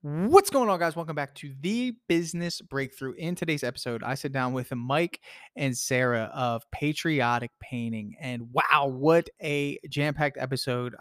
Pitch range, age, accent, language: 120-145 Hz, 20-39, American, English